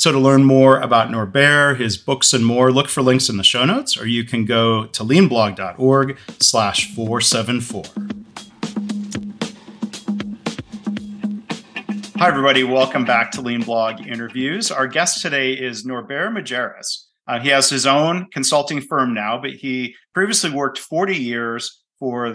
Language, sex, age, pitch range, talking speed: English, male, 40-59, 120-145 Hz, 140 wpm